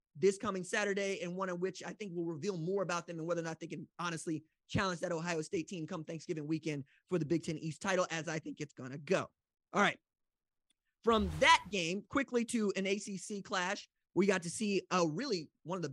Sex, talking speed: male, 230 wpm